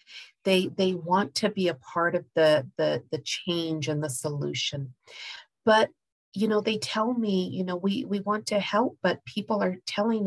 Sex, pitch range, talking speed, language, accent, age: female, 175-215 Hz, 185 wpm, English, American, 40-59